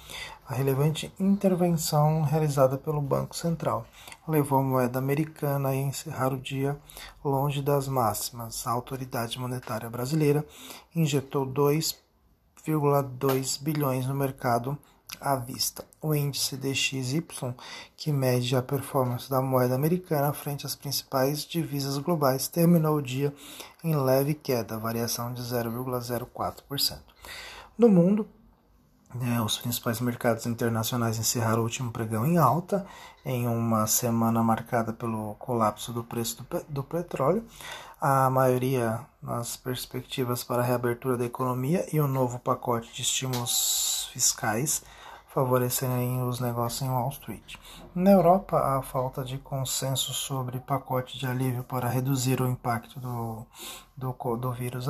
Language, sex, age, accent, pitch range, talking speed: Portuguese, male, 40-59, Brazilian, 120-145 Hz, 125 wpm